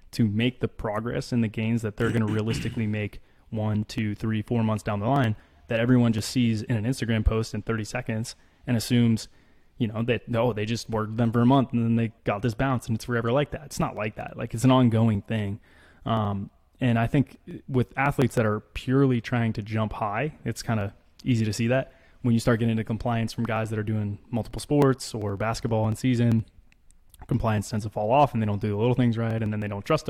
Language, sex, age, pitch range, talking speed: English, male, 20-39, 105-120 Hz, 245 wpm